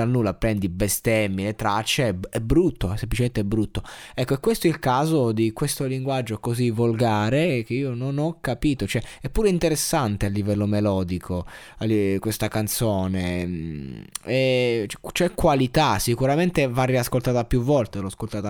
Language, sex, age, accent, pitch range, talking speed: Italian, male, 20-39, native, 105-140 Hz, 160 wpm